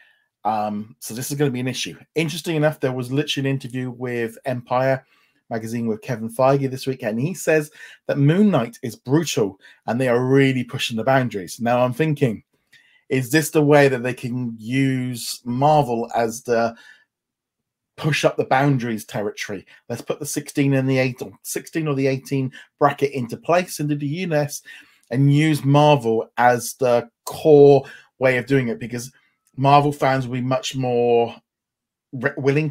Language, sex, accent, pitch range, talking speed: English, male, British, 120-145 Hz, 170 wpm